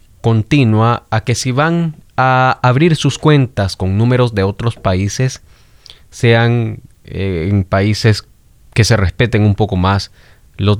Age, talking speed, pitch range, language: 30-49, 140 wpm, 95-120 Hz, Spanish